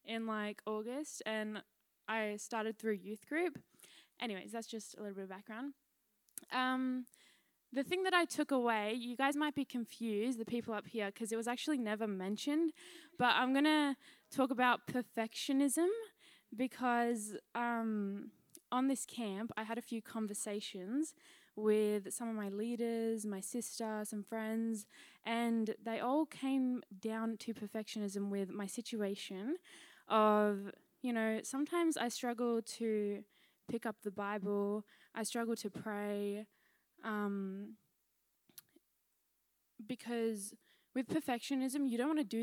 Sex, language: female, English